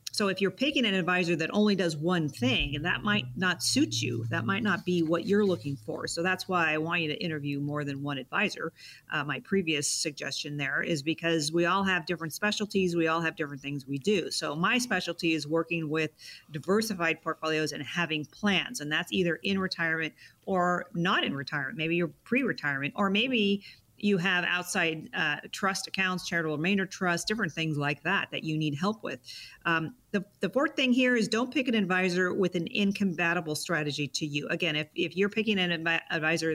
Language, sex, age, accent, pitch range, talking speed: English, female, 40-59, American, 155-195 Hz, 205 wpm